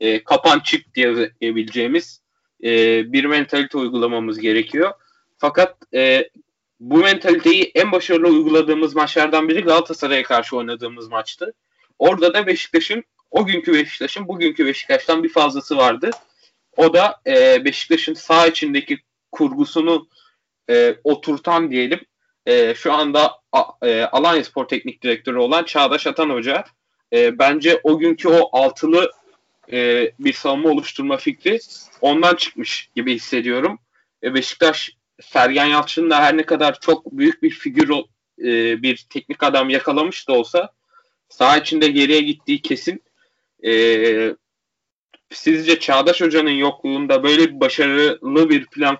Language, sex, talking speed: Turkish, male, 115 wpm